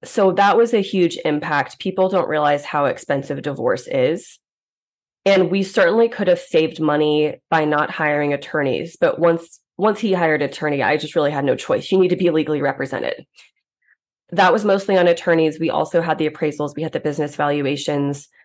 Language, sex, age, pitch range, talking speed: English, female, 20-39, 155-180 Hz, 185 wpm